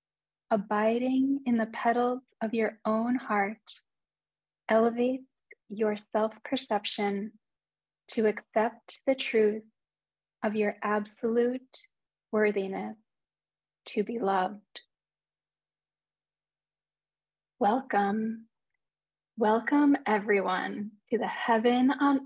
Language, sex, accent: English, female, American